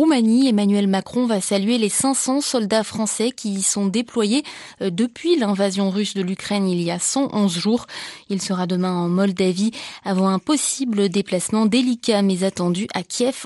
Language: French